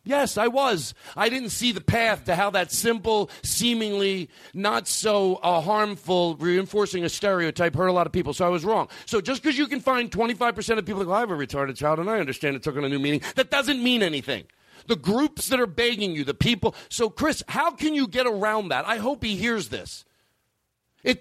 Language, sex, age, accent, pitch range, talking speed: English, male, 50-69, American, 170-245 Hz, 225 wpm